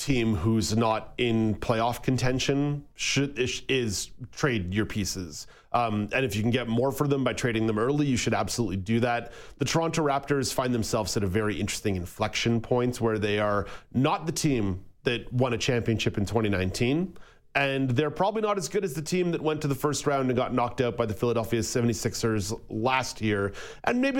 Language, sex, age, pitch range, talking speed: English, male, 40-59, 110-145 Hz, 195 wpm